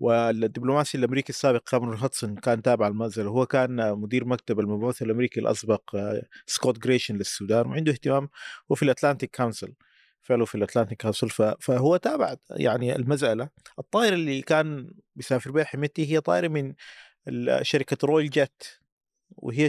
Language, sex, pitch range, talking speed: Arabic, male, 120-155 Hz, 135 wpm